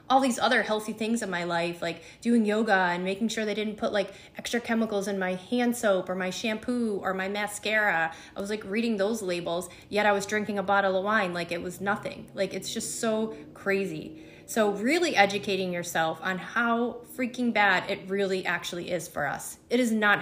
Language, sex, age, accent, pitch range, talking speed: English, female, 30-49, American, 185-220 Hz, 210 wpm